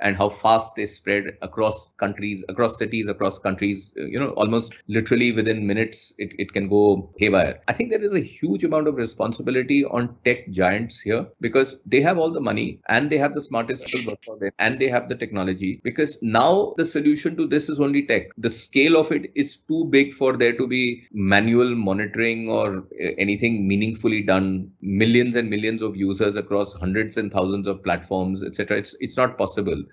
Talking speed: 195 wpm